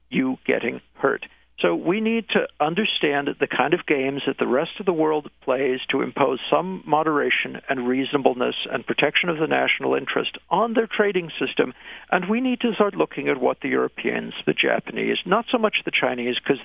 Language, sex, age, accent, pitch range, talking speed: English, male, 50-69, American, 145-215 Hz, 190 wpm